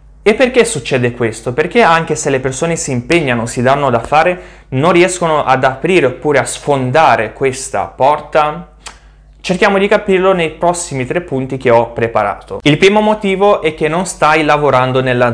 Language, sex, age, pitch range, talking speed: Italian, male, 20-39, 125-160 Hz, 170 wpm